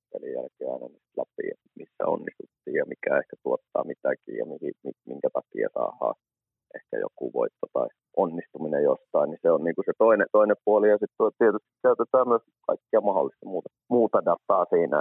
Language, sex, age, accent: Finnish, male, 30-49, native